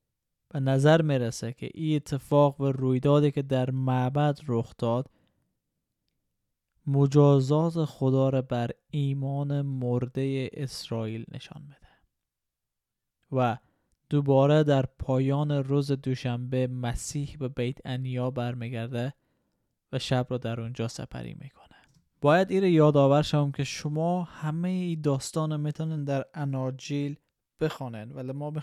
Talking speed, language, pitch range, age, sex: 130 wpm, Persian, 125-150 Hz, 20-39, male